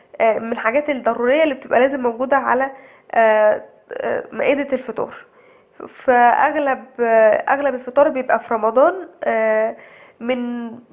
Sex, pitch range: female, 235-310 Hz